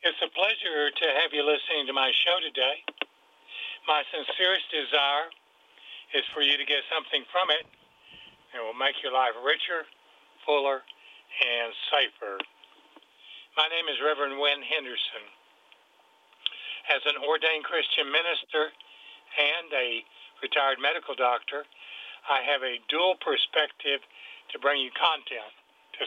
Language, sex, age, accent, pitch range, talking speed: English, male, 60-79, American, 135-160 Hz, 130 wpm